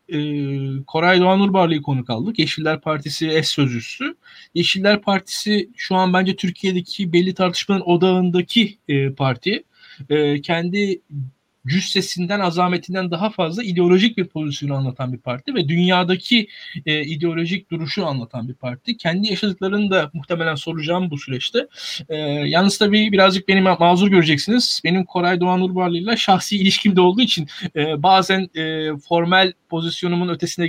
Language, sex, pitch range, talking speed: Turkish, male, 160-195 Hz, 140 wpm